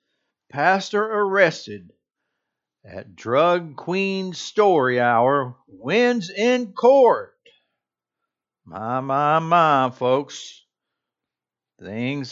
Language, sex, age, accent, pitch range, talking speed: English, male, 60-79, American, 130-195 Hz, 75 wpm